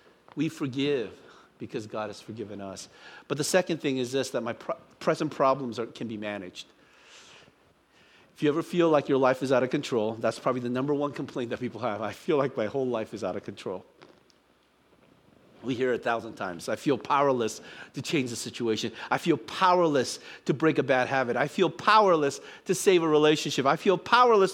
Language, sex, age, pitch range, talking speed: English, male, 50-69, 125-170 Hz, 200 wpm